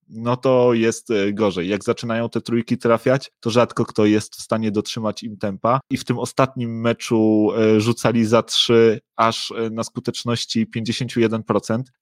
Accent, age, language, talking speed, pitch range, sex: native, 30-49, Polish, 150 wpm, 110-120 Hz, male